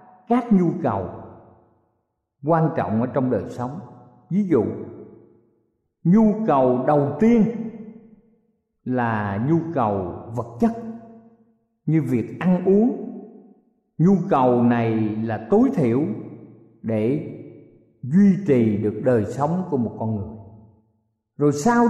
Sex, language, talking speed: male, Vietnamese, 115 wpm